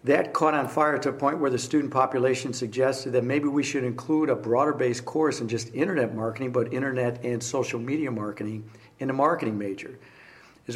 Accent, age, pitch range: American, 60-79, 120-140 Hz